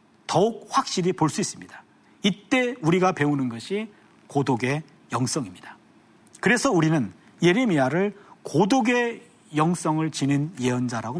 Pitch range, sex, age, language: 140-200 Hz, male, 40-59, Korean